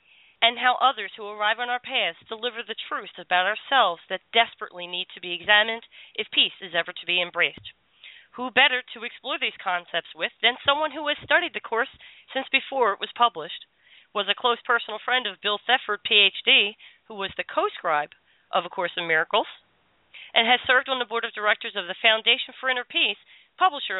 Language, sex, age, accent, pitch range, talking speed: English, female, 40-59, American, 195-255 Hz, 195 wpm